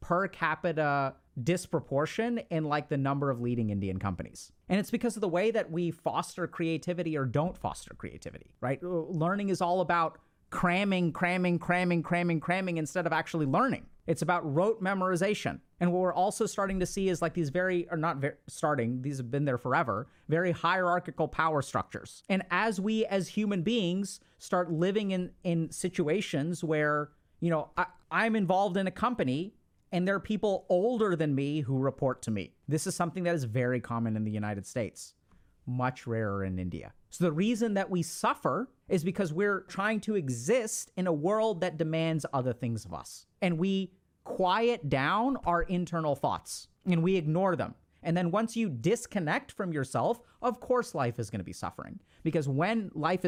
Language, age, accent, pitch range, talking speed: English, 30-49, American, 140-185 Hz, 180 wpm